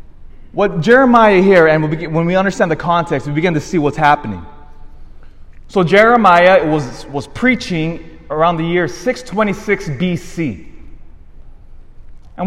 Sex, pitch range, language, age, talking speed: male, 125-205 Hz, English, 20-39, 125 wpm